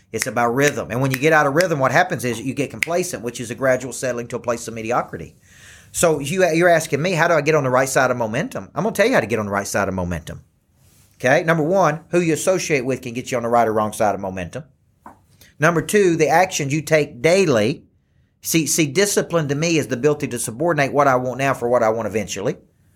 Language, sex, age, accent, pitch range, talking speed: English, male, 40-59, American, 120-150 Hz, 260 wpm